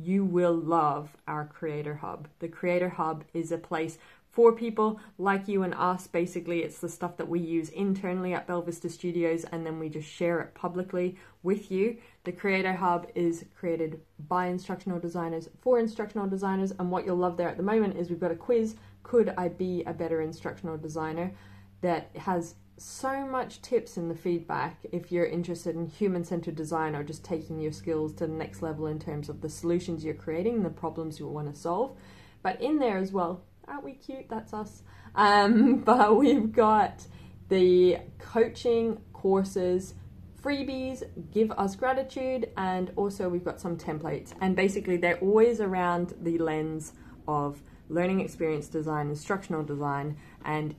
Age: 20-39